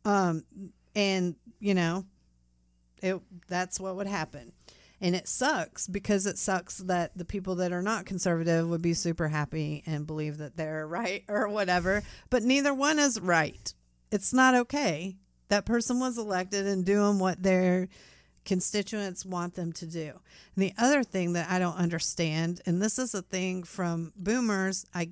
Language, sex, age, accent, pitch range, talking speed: English, female, 40-59, American, 165-205 Hz, 165 wpm